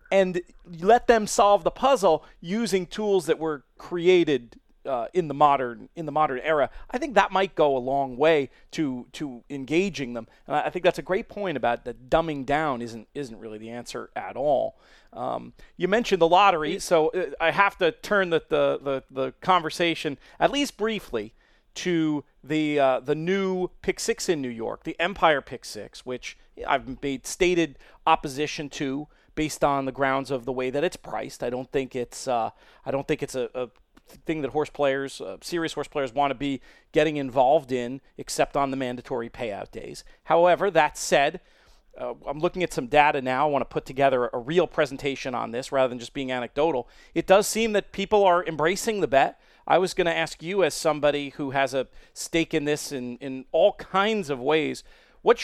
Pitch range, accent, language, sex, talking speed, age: 135-180 Hz, American, English, male, 200 wpm, 40-59